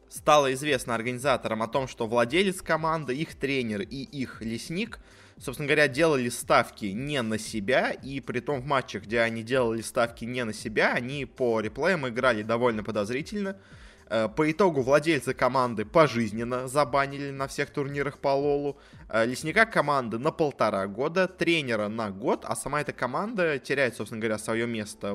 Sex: male